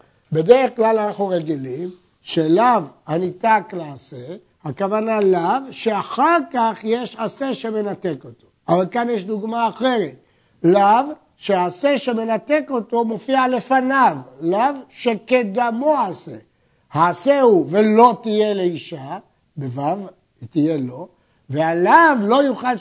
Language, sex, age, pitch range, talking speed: Hebrew, male, 60-79, 165-245 Hz, 105 wpm